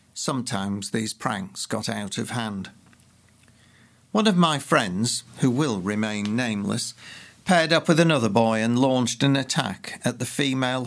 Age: 50-69